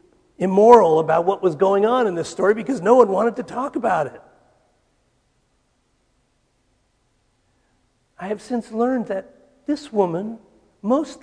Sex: male